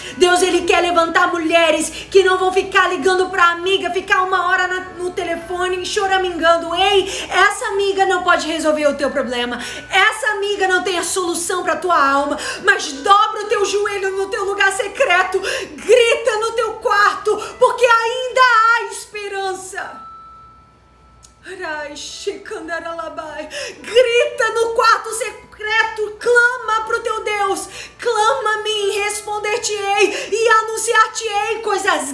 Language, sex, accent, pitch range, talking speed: Portuguese, female, Brazilian, 330-415 Hz, 130 wpm